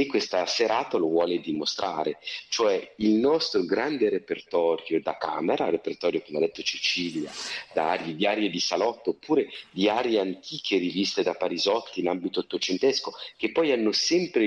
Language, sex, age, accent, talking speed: Italian, male, 40-59, native, 145 wpm